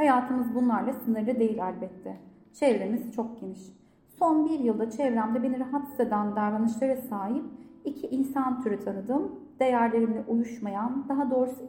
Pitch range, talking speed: 215-275 Hz, 130 wpm